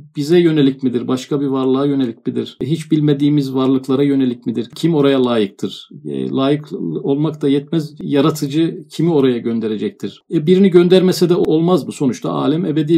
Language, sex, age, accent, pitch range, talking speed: Turkish, male, 50-69, native, 140-175 Hz, 155 wpm